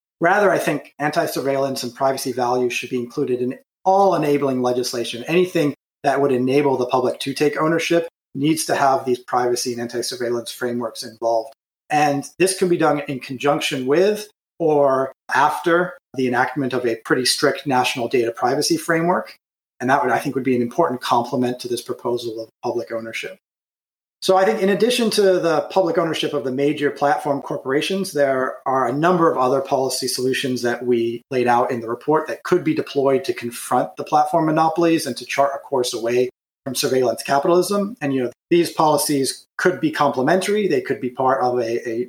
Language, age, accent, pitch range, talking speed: English, 30-49, American, 125-160 Hz, 185 wpm